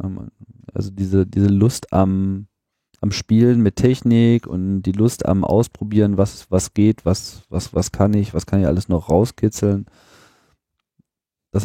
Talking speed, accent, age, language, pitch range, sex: 150 wpm, German, 40-59, German, 95-115 Hz, male